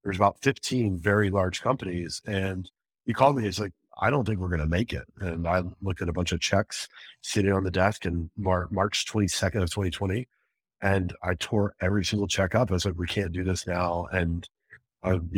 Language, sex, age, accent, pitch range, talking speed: English, male, 50-69, American, 90-105 Hz, 220 wpm